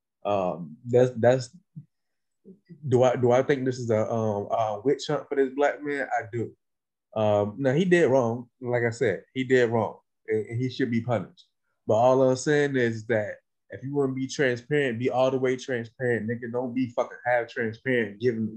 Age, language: 20-39, English